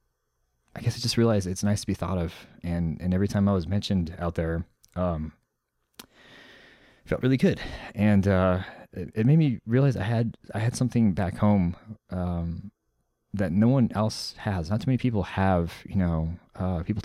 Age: 20-39